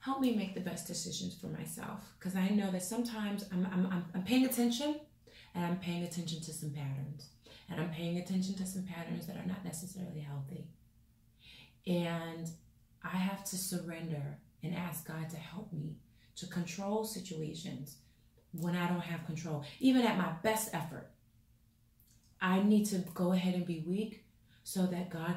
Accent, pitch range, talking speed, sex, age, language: American, 160-190 Hz, 170 wpm, female, 30-49, English